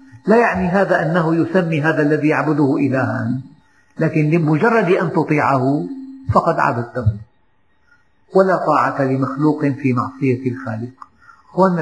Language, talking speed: Arabic, 110 wpm